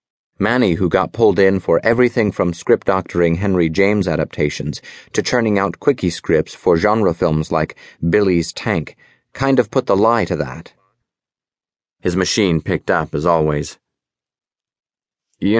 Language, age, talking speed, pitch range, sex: English, 30-49, 140 wpm, 80-100 Hz, male